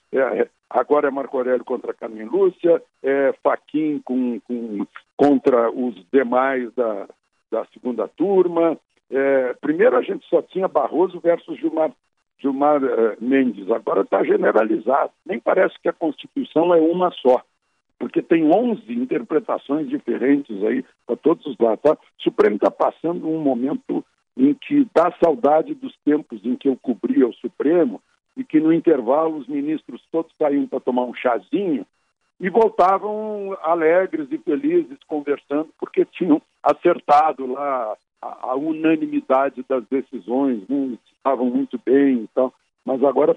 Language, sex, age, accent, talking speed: Portuguese, male, 60-79, Brazilian, 140 wpm